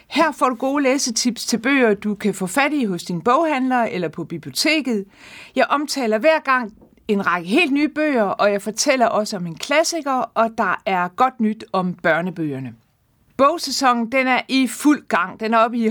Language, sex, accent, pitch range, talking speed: Danish, female, native, 210-270 Hz, 190 wpm